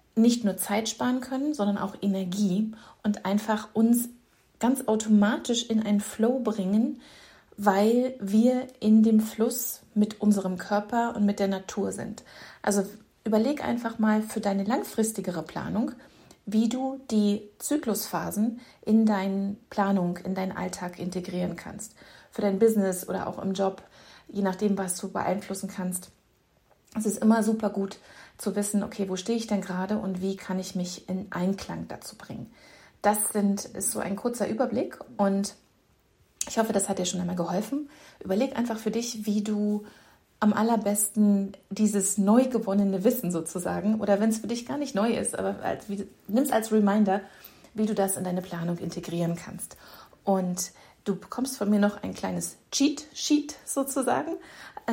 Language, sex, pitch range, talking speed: German, female, 190-230 Hz, 160 wpm